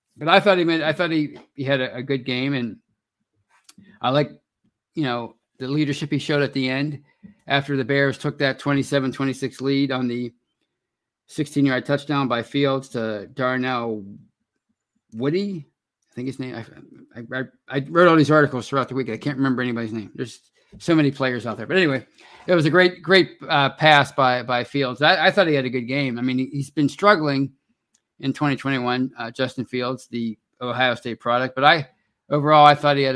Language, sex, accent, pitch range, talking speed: English, male, American, 125-145 Hz, 205 wpm